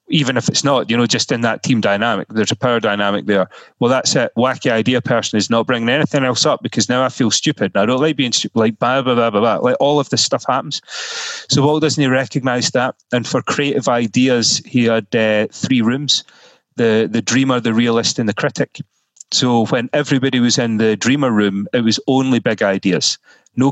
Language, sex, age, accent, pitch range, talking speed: English, male, 30-49, British, 115-145 Hz, 225 wpm